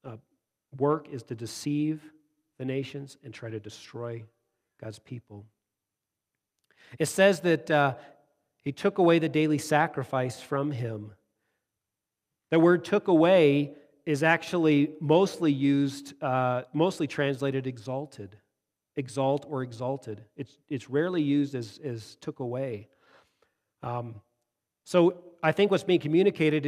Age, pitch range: 40-59, 130-160 Hz